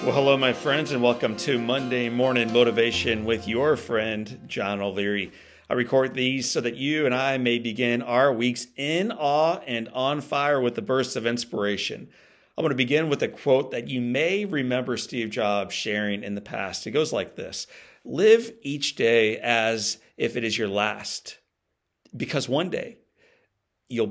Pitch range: 110-135 Hz